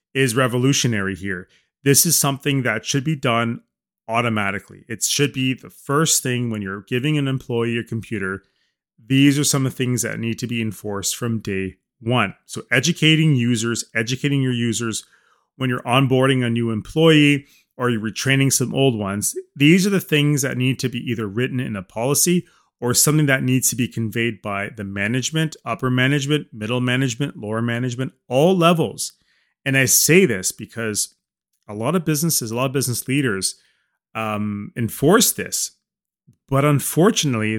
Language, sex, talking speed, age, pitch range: English, male, 170 wpm, 30-49, 110-140 Hz